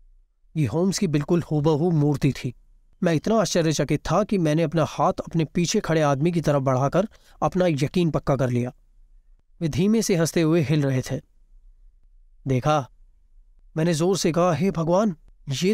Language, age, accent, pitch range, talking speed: Hindi, 30-49, native, 140-195 Hz, 170 wpm